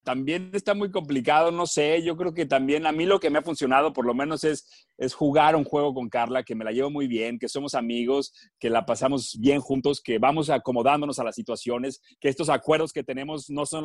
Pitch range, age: 130-165 Hz, 30-49